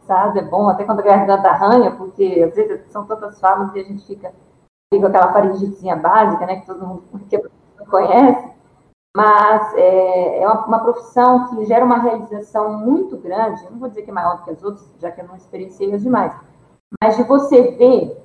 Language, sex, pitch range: Portuguese, female, 195-250 Hz